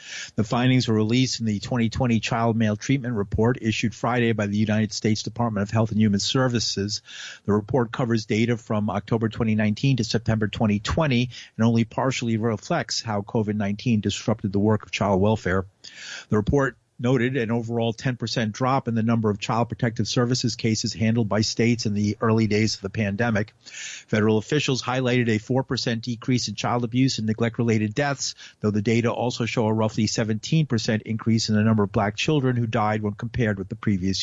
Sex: male